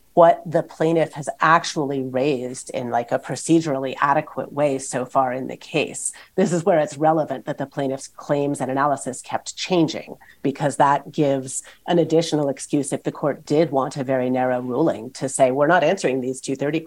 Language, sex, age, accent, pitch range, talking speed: English, female, 40-59, American, 140-180 Hz, 185 wpm